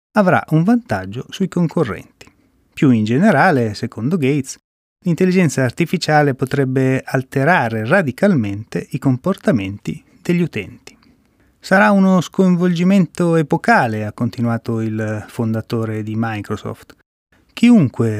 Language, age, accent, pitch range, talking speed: Italian, 30-49, native, 115-160 Hz, 100 wpm